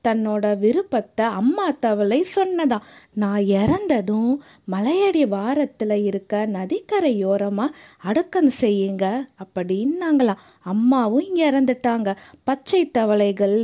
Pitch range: 220-355 Hz